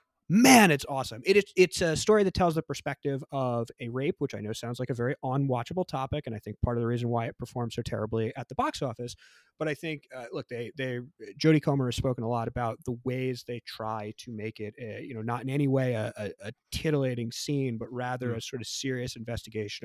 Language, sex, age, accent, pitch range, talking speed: English, male, 30-49, American, 115-140 Hz, 240 wpm